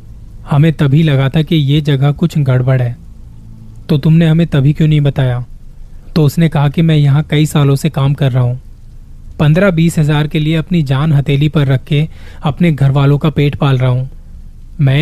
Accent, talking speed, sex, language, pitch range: native, 200 wpm, male, Hindi, 130-155 Hz